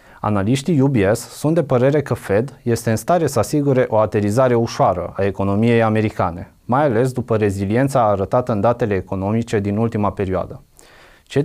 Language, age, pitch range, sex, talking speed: Romanian, 30-49, 105-135 Hz, male, 155 wpm